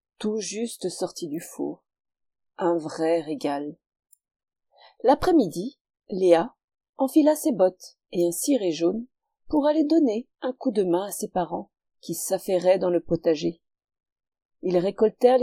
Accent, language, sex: French, French, female